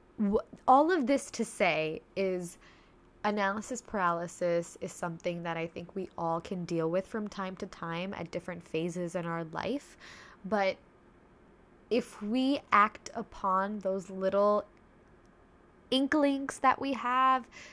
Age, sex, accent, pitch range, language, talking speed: 10-29, female, American, 190-260 Hz, English, 130 wpm